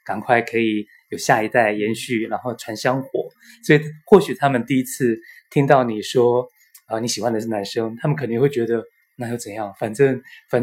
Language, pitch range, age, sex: Chinese, 120-145 Hz, 20-39, male